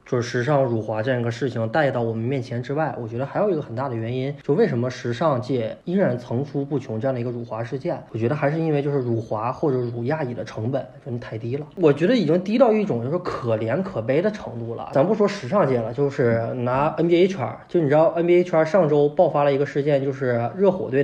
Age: 20-39